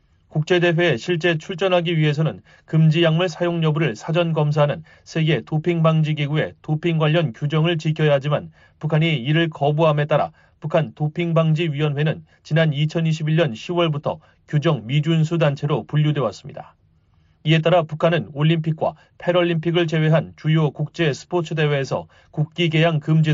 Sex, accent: male, native